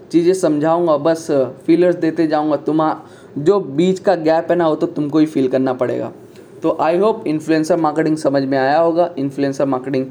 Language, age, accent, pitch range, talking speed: Hindi, 20-39, native, 150-180 Hz, 185 wpm